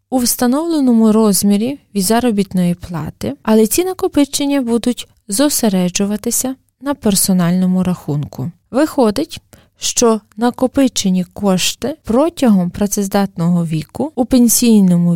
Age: 20-39